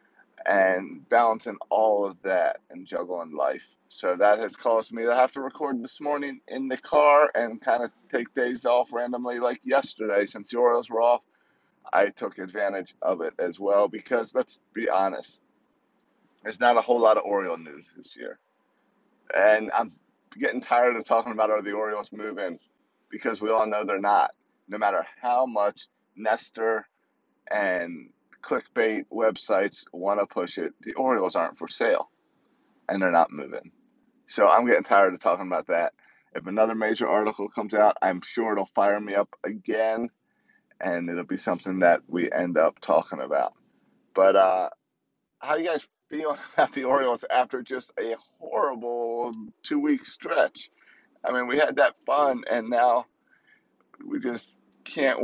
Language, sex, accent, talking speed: English, male, American, 165 wpm